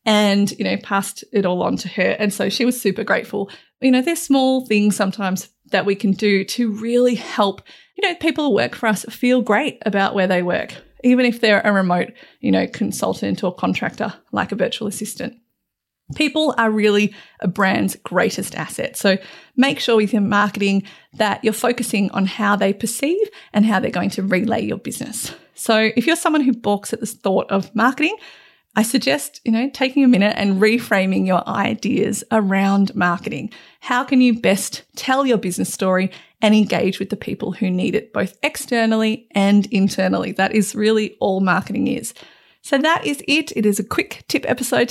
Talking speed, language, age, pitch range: 190 wpm, English, 30-49, 200-250 Hz